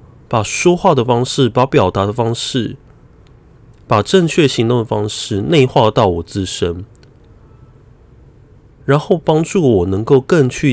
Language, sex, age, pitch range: Chinese, male, 30-49, 105-145 Hz